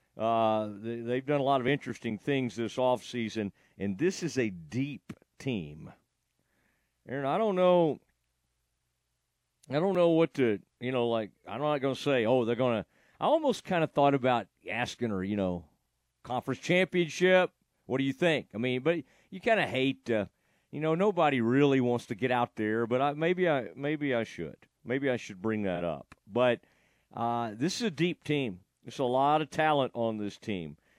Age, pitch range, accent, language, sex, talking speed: 50-69, 115-145 Hz, American, English, male, 190 wpm